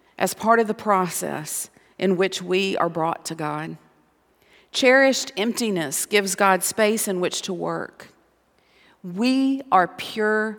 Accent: American